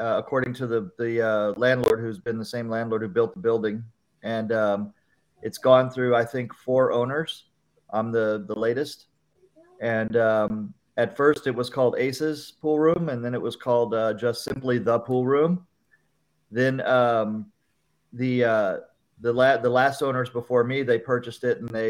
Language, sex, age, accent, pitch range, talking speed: English, male, 40-59, American, 115-130 Hz, 185 wpm